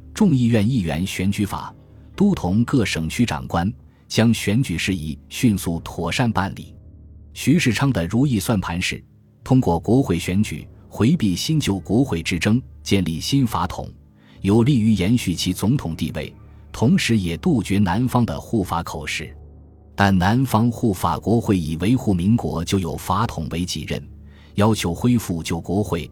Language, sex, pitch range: Chinese, male, 85-115 Hz